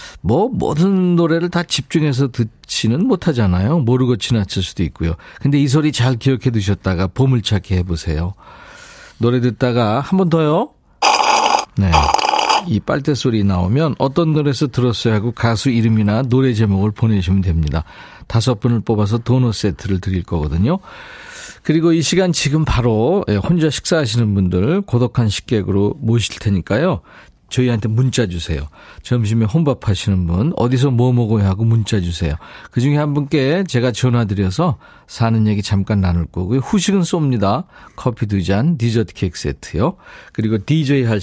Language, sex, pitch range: Korean, male, 100-145 Hz